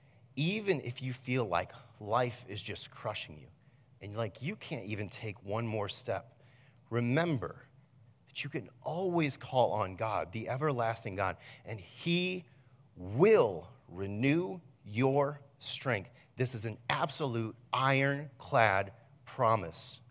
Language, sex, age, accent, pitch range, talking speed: English, male, 40-59, American, 110-135 Hz, 125 wpm